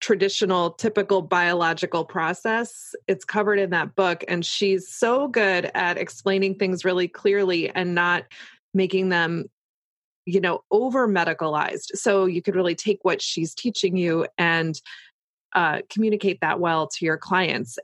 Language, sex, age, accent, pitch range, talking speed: English, female, 20-39, American, 175-210 Hz, 145 wpm